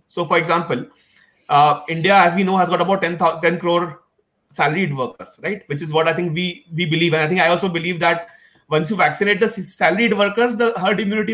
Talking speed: 215 wpm